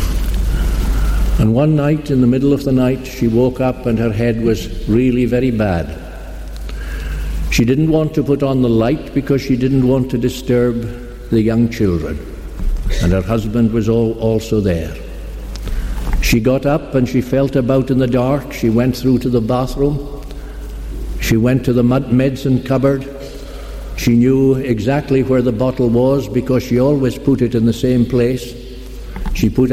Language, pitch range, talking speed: English, 95-130 Hz, 165 wpm